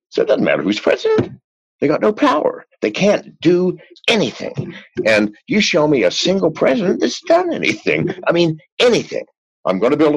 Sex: male